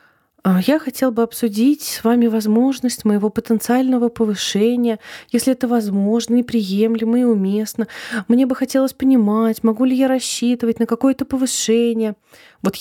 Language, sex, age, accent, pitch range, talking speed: Russian, female, 20-39, native, 165-235 Hz, 135 wpm